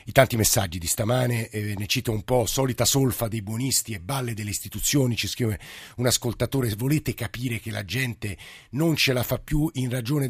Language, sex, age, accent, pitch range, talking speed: Italian, male, 50-69, native, 105-135 Hz, 200 wpm